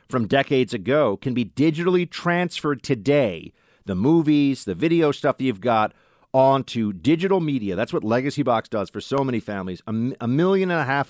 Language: English